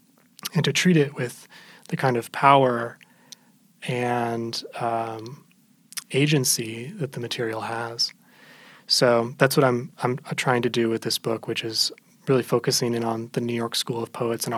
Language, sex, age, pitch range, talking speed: English, male, 20-39, 115-145 Hz, 165 wpm